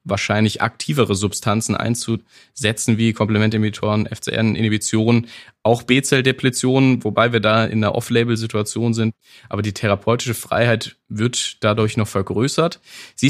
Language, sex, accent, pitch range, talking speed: German, male, German, 105-120 Hz, 120 wpm